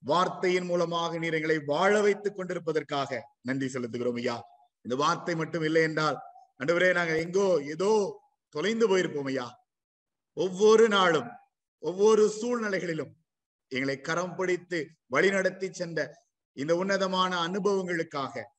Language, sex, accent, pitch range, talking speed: Tamil, male, native, 145-190 Hz, 105 wpm